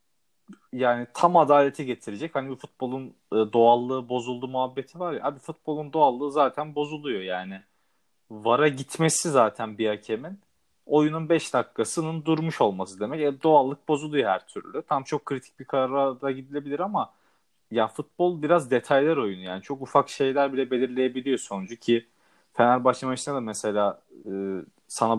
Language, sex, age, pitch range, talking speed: Turkish, male, 40-59, 120-155 Hz, 140 wpm